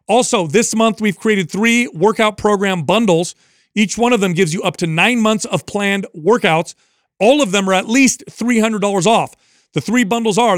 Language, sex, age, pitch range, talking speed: English, male, 40-59, 150-210 Hz, 195 wpm